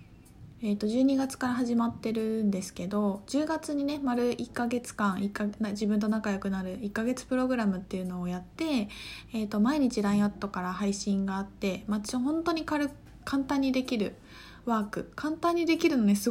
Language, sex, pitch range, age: Japanese, female, 200-255 Hz, 20-39